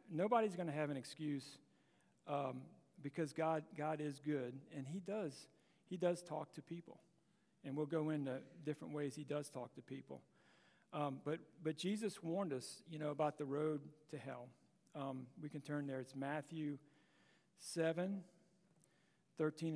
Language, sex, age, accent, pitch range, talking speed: English, male, 40-59, American, 135-170 Hz, 160 wpm